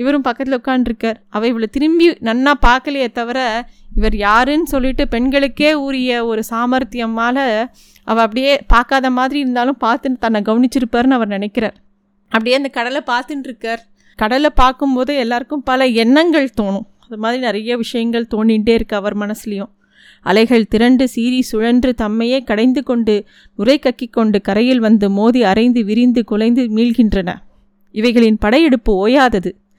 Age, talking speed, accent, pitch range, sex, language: 20-39, 125 wpm, native, 220-265 Hz, female, Tamil